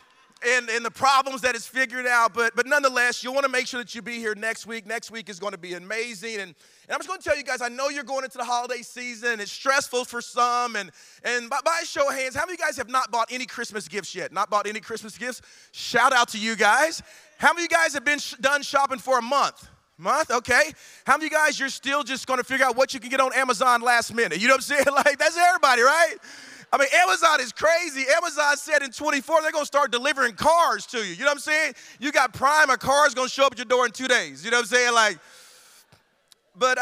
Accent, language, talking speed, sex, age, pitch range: American, English, 275 wpm, male, 30-49, 225-275 Hz